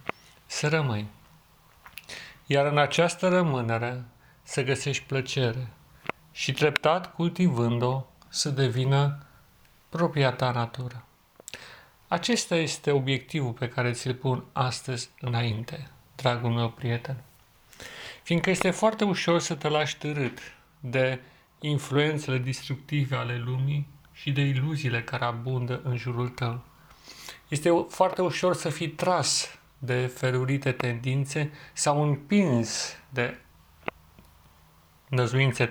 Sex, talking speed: male, 105 wpm